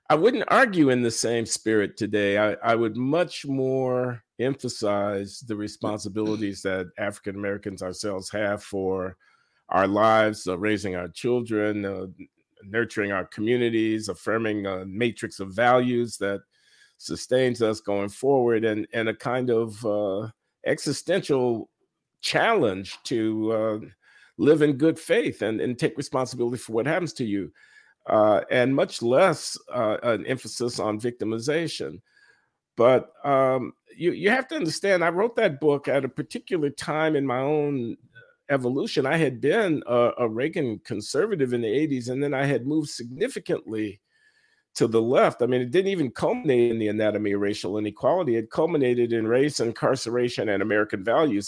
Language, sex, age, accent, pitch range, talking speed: English, male, 50-69, American, 105-135 Hz, 155 wpm